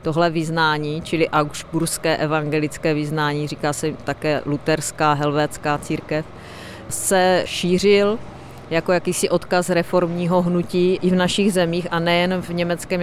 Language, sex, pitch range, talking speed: Czech, female, 150-170 Hz, 125 wpm